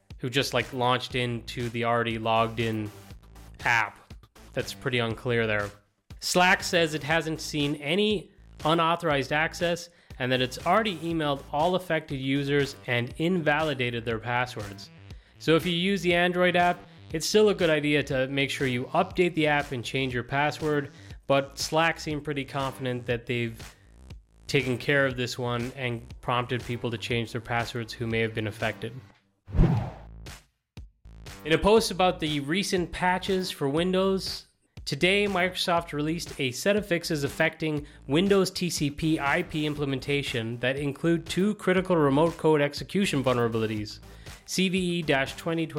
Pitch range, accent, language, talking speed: 120-165 Hz, American, English, 145 wpm